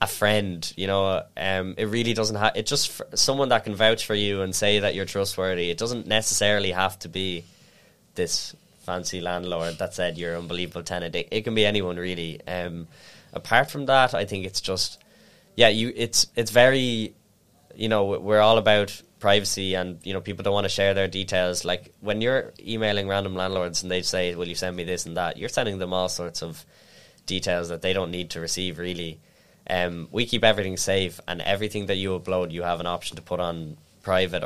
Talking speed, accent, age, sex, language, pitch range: 210 wpm, Irish, 10-29, male, English, 90-100 Hz